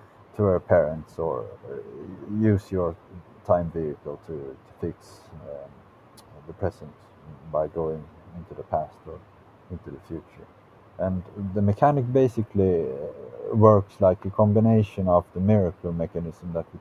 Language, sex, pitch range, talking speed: English, male, 85-105 Hz, 130 wpm